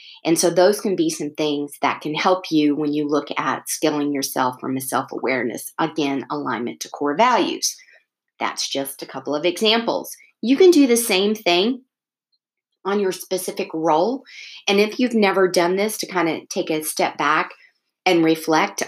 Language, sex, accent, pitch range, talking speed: English, female, American, 155-195 Hz, 180 wpm